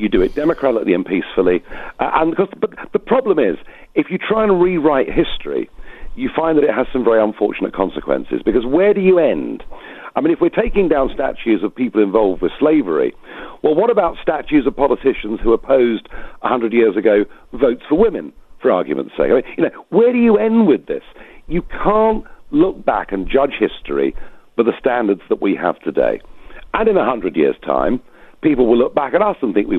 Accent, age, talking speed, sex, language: British, 50-69, 200 wpm, male, English